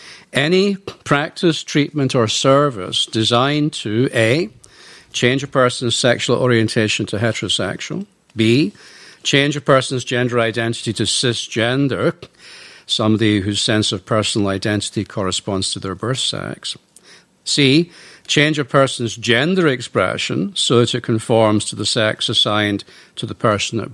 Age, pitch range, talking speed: 60-79, 110-140 Hz, 130 wpm